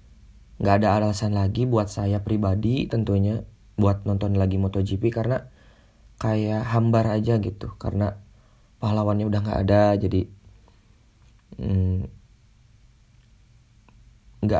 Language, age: Indonesian, 20-39